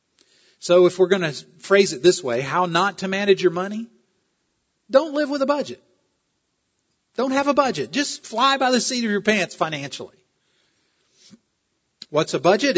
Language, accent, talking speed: English, American, 170 wpm